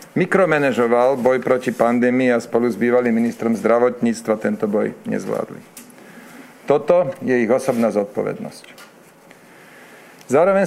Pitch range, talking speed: 125-160 Hz, 105 wpm